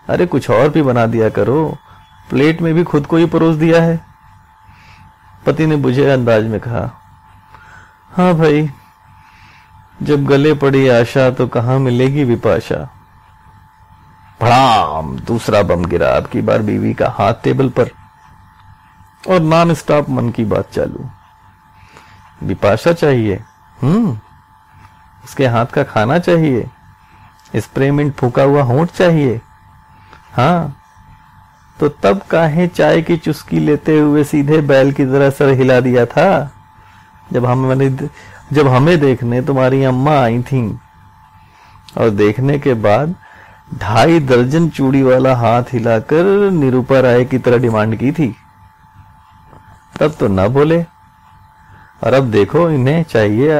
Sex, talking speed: male, 130 wpm